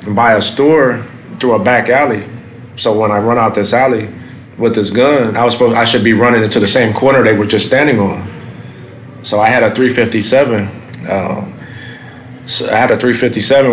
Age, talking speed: 30-49, 190 wpm